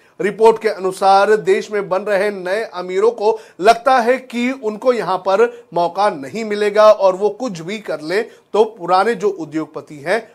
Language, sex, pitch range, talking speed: Hindi, male, 175-230 Hz, 175 wpm